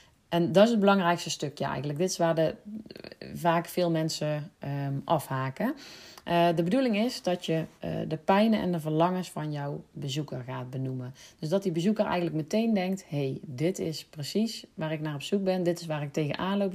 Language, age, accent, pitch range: Dutch, 40-59, Dutch, 150-185 Hz